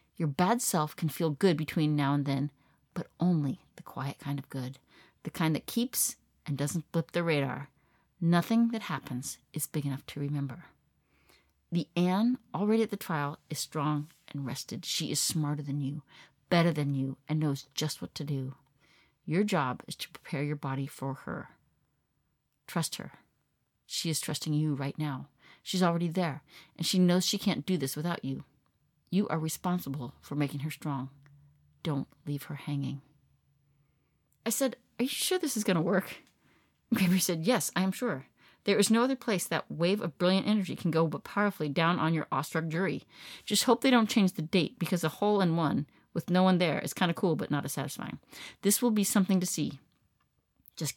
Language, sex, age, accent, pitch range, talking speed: English, female, 40-59, American, 145-190 Hz, 190 wpm